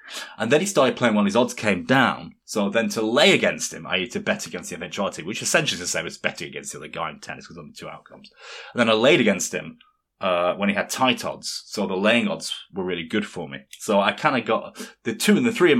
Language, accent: English, British